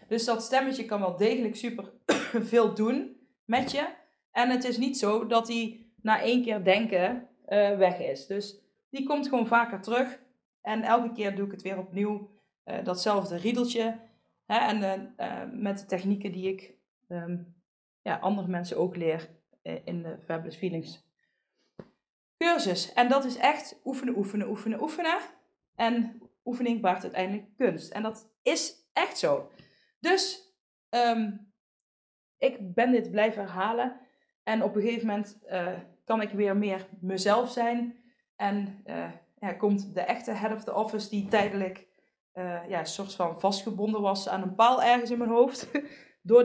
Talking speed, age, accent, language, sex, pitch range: 150 wpm, 20-39, Dutch, Dutch, female, 185-240 Hz